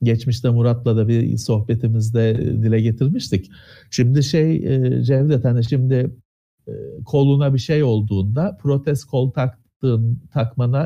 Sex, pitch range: male, 110-155 Hz